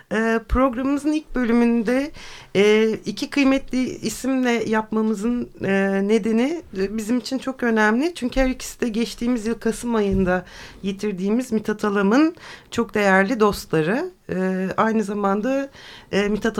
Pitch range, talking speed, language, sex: 195-250 Hz, 105 wpm, Turkish, female